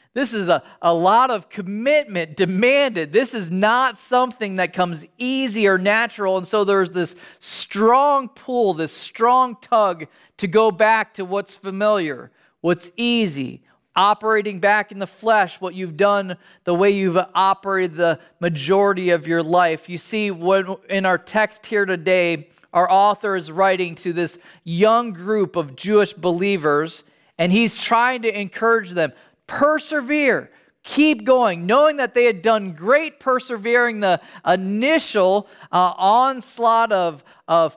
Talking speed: 145 wpm